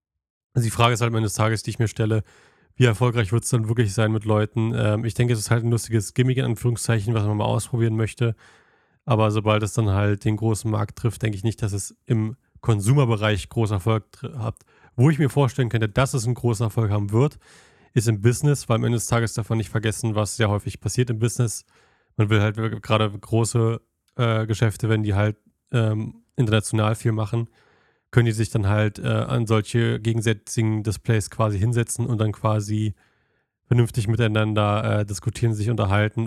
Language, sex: German, male